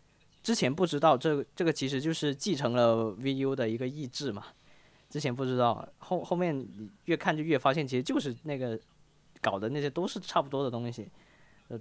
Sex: male